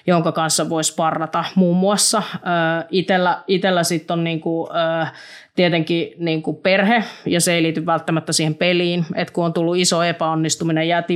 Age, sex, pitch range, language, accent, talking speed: 30-49, female, 160-175 Hz, Finnish, native, 150 wpm